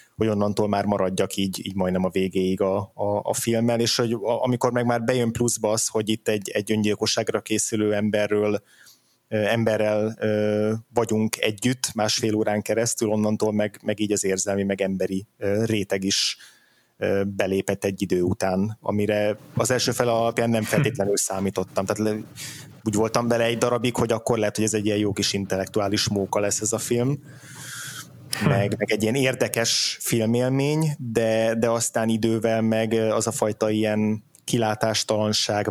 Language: Hungarian